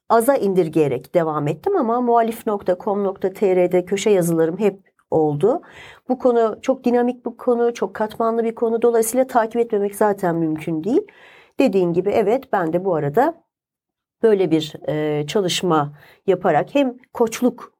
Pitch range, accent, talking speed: 185-260 Hz, native, 135 wpm